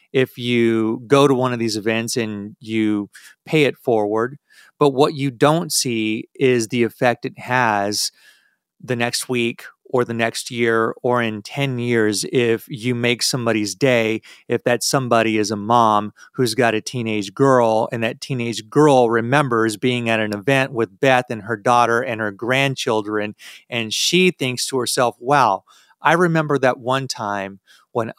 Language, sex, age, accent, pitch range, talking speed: English, male, 30-49, American, 110-140 Hz, 170 wpm